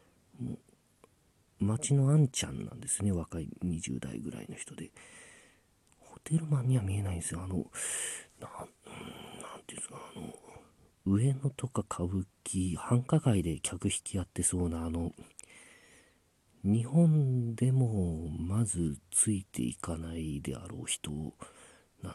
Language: Japanese